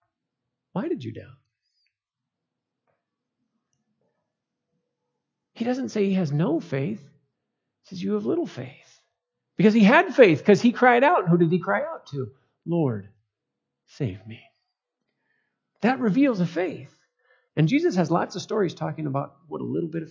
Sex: male